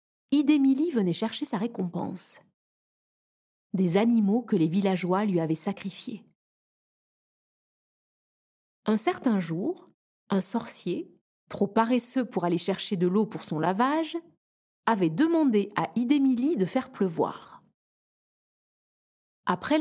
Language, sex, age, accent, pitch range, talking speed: French, female, 30-49, French, 190-245 Hz, 110 wpm